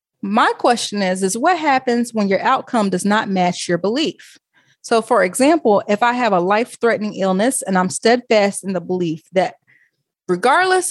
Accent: American